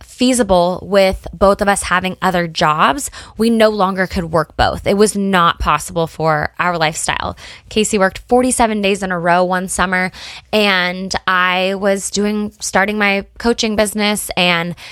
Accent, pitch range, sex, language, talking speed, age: American, 180-220 Hz, female, English, 155 wpm, 20-39